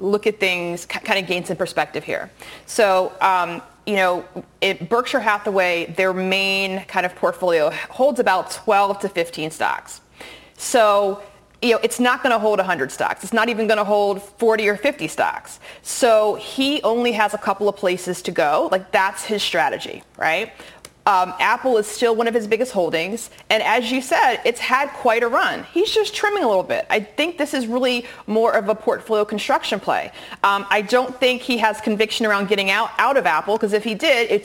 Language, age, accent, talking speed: English, 30-49, American, 195 wpm